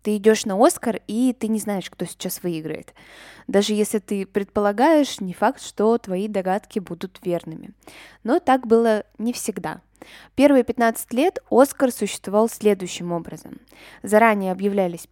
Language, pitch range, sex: Russian, 190-240 Hz, female